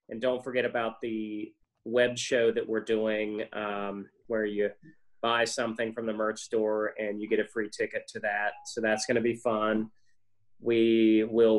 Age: 30-49